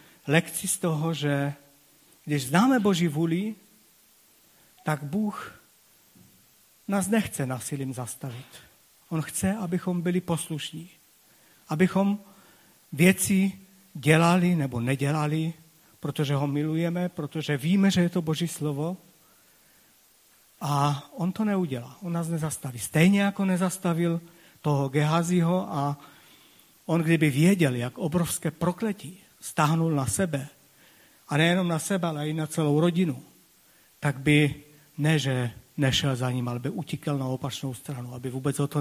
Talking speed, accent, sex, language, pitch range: 125 wpm, native, male, Czech, 140-175 Hz